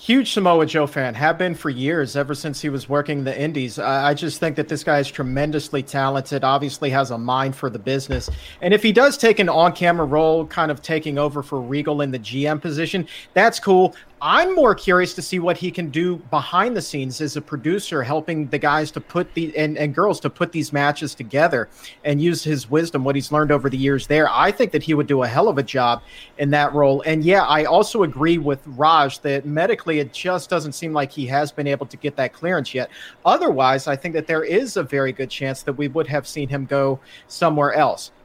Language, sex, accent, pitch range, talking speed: English, male, American, 145-180 Hz, 230 wpm